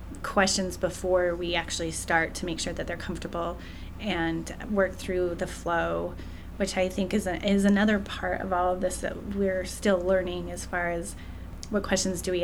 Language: English